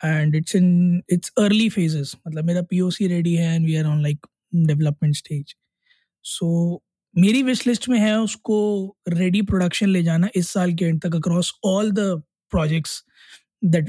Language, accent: Hindi, native